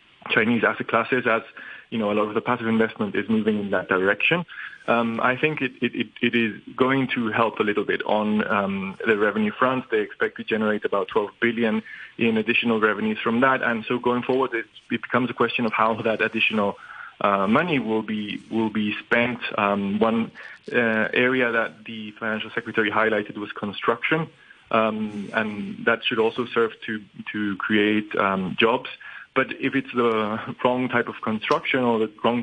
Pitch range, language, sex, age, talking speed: 105-120 Hz, English, male, 20-39, 185 wpm